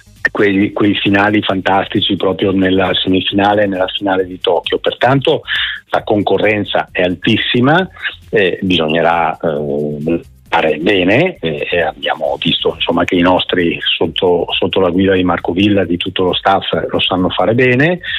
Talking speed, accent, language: 150 wpm, native, Italian